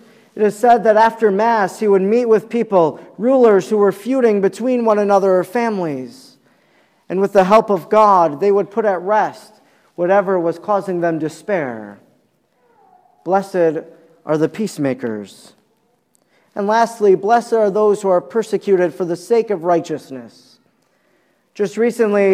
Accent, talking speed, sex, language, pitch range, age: American, 150 wpm, male, English, 180-220 Hz, 50-69